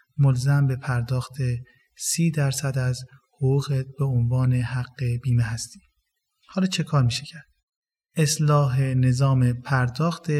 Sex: male